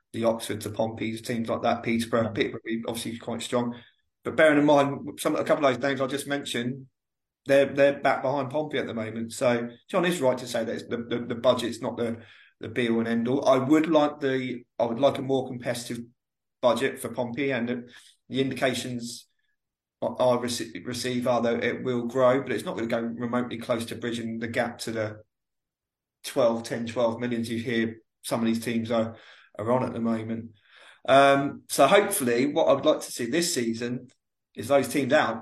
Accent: British